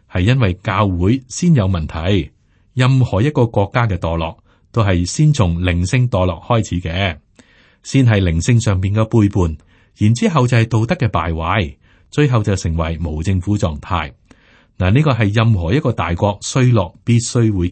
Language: Chinese